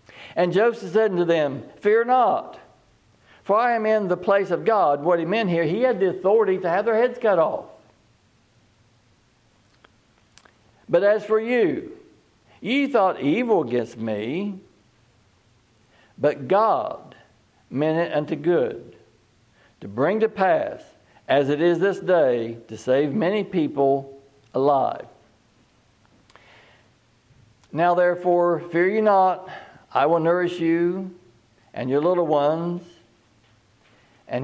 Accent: American